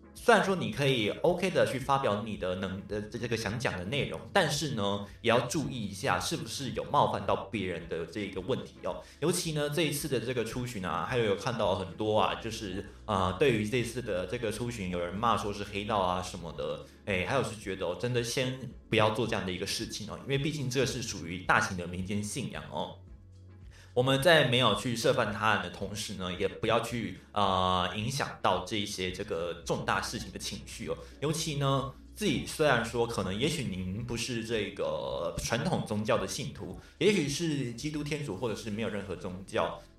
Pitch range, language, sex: 95-135 Hz, Chinese, male